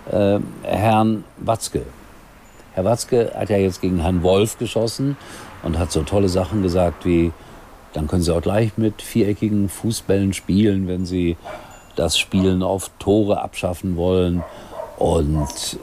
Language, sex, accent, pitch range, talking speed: German, male, German, 90-120 Hz, 140 wpm